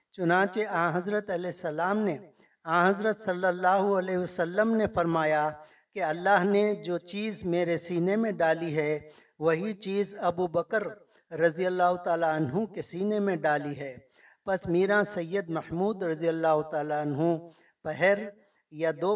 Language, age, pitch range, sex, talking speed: Urdu, 50-69, 155-195 Hz, male, 150 wpm